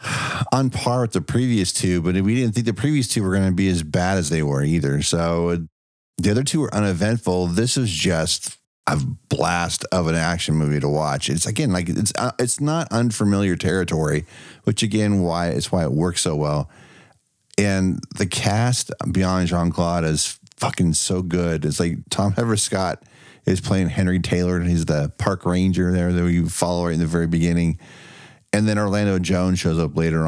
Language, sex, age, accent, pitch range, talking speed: English, male, 40-59, American, 85-110 Hz, 190 wpm